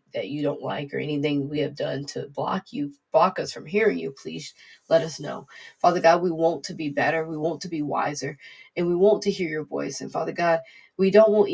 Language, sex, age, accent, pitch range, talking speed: English, female, 20-39, American, 155-190 Hz, 240 wpm